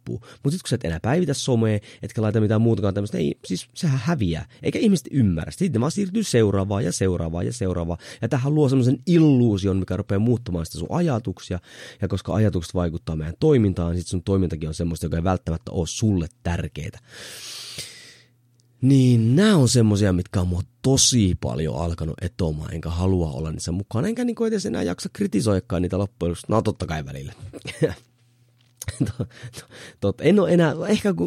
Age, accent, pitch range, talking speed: 30-49, native, 85-125 Hz, 165 wpm